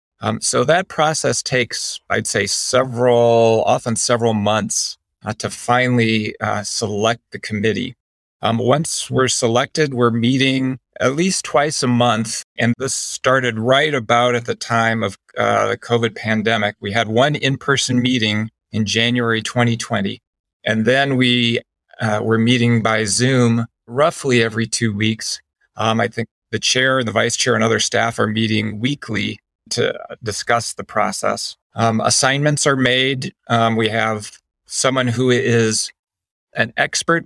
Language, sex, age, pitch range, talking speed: English, male, 40-59, 110-130 Hz, 150 wpm